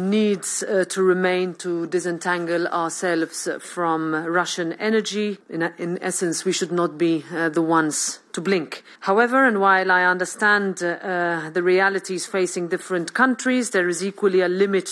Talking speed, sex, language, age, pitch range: 155 wpm, female, Greek, 30-49, 170-215 Hz